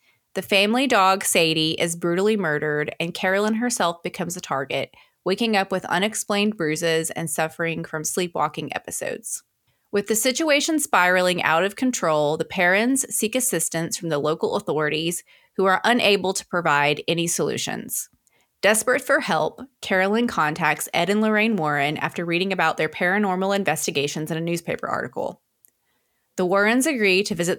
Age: 20-39